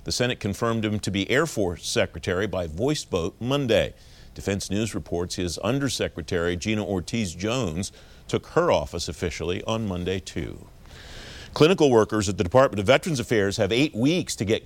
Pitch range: 85-115 Hz